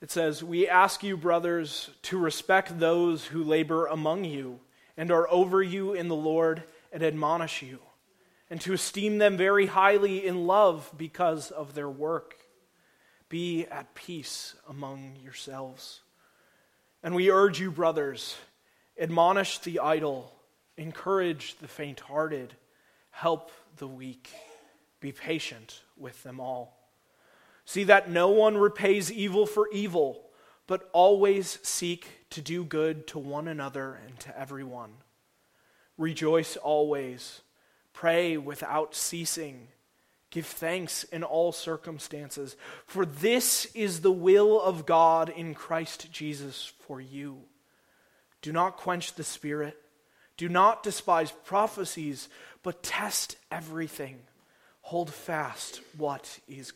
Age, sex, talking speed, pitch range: 30-49, male, 125 wpm, 145-180 Hz